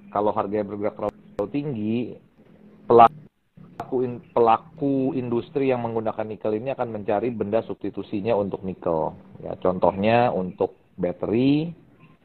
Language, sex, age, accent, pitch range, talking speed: Indonesian, male, 40-59, native, 95-115 Hz, 115 wpm